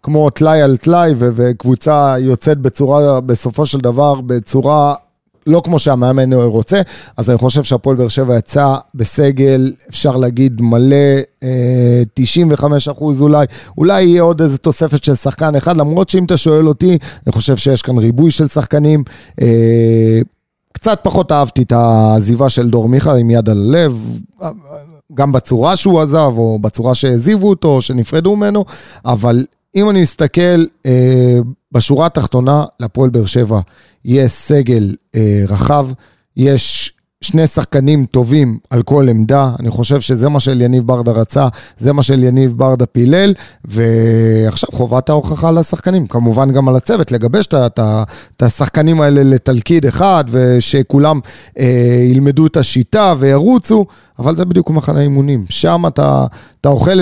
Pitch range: 120-155 Hz